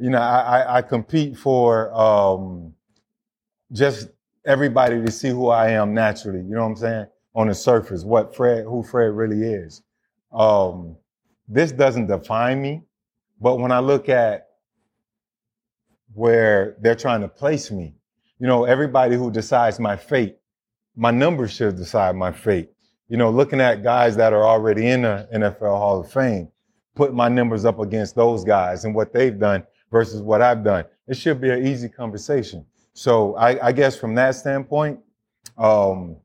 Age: 30-49